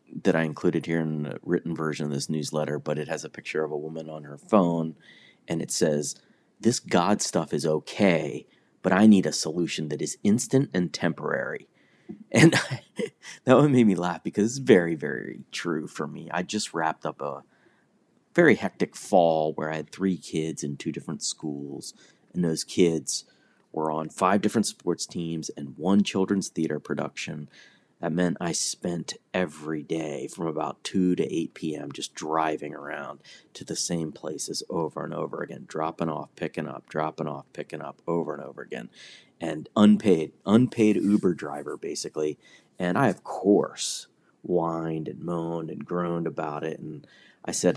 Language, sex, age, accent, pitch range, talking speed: English, male, 30-49, American, 75-90 Hz, 175 wpm